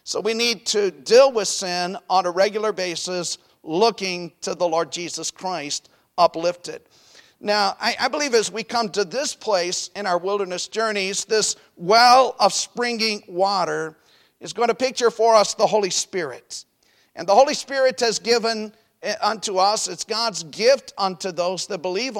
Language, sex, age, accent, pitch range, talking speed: English, male, 50-69, American, 185-235 Hz, 160 wpm